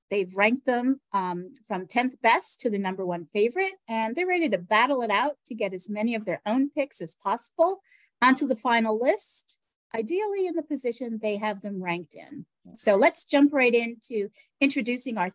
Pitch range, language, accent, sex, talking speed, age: 190-270 Hz, English, American, female, 190 wpm, 40-59